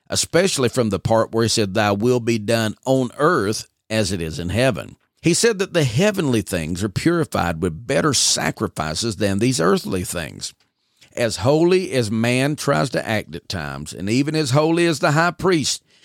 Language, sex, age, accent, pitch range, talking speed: English, male, 50-69, American, 100-145 Hz, 185 wpm